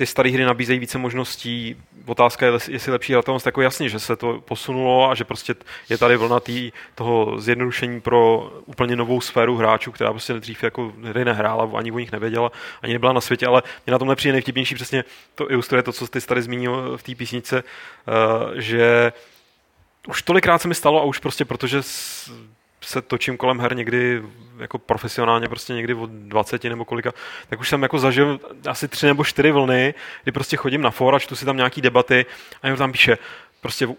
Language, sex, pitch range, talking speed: Czech, male, 120-140 Hz, 195 wpm